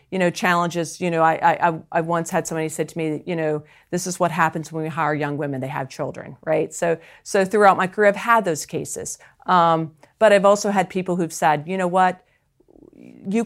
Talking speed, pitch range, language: 225 wpm, 150-180 Hz, English